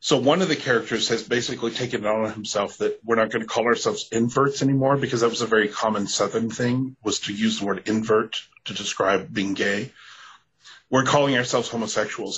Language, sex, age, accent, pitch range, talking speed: English, male, 30-49, American, 105-130 Hz, 205 wpm